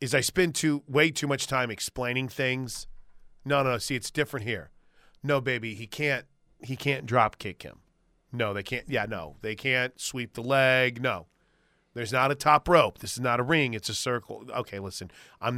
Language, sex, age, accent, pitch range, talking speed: English, male, 30-49, American, 115-155 Hz, 200 wpm